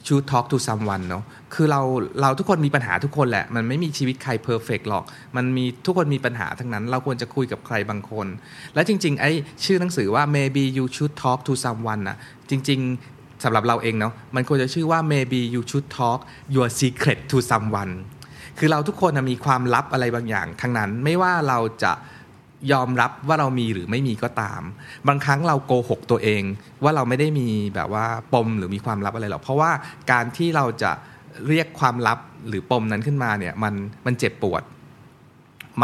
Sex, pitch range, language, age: male, 110-140 Hz, Thai, 20-39